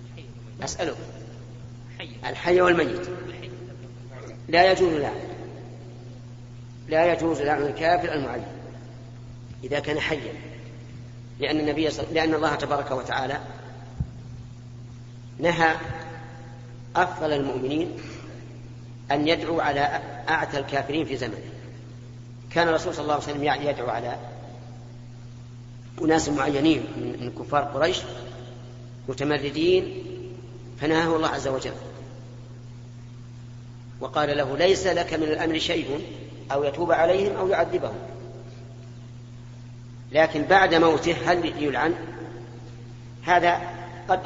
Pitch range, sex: 120-150 Hz, female